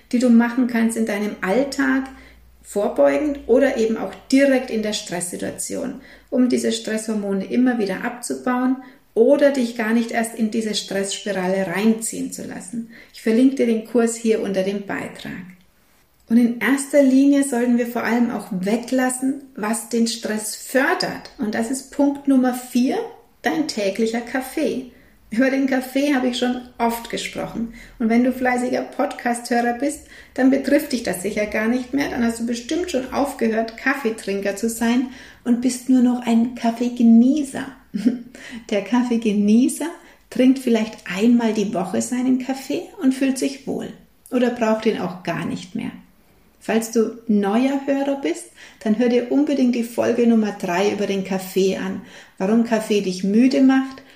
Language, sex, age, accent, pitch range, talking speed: German, female, 60-79, German, 220-265 Hz, 160 wpm